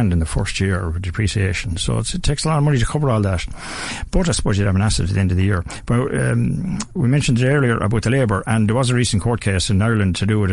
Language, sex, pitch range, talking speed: English, male, 100-125 Hz, 295 wpm